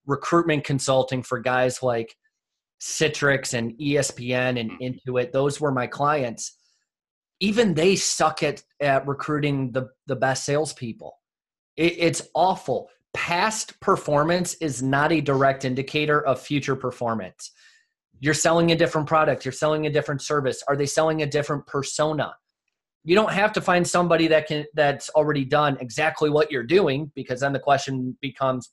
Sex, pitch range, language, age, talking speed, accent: male, 135-160 Hz, English, 30-49, 155 wpm, American